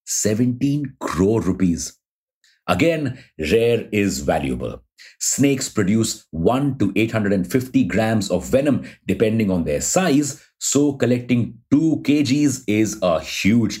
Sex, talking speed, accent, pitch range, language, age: male, 115 wpm, Indian, 95-125 Hz, English, 50-69